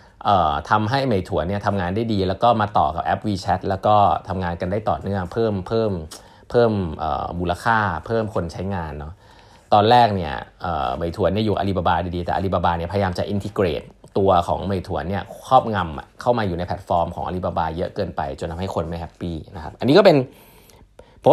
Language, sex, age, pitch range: Thai, male, 20-39, 90-110 Hz